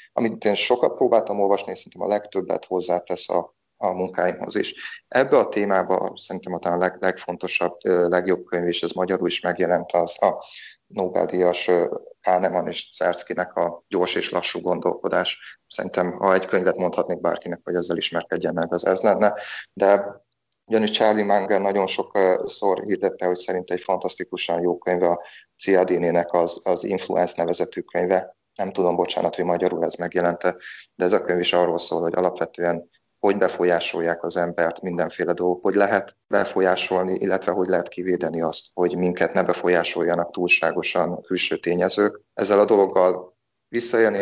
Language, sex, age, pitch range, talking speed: Hungarian, male, 30-49, 85-95 Hz, 150 wpm